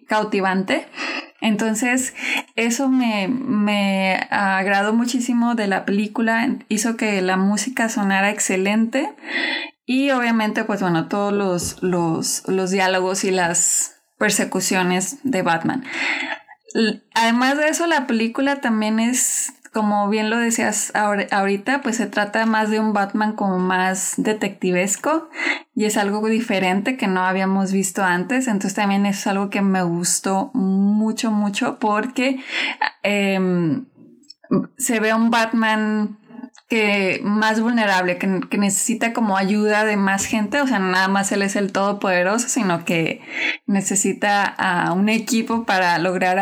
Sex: female